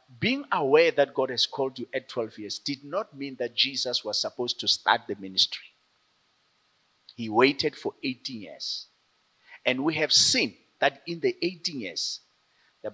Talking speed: 165 wpm